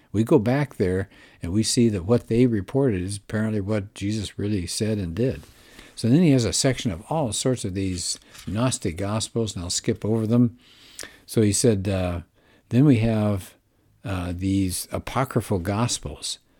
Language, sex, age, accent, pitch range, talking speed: English, male, 60-79, American, 95-120 Hz, 175 wpm